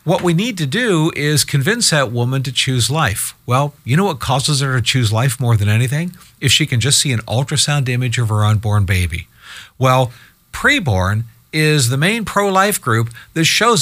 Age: 50-69